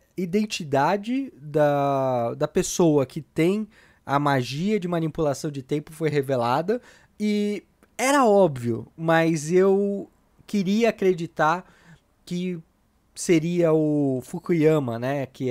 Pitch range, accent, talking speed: 135-175 Hz, Brazilian, 105 wpm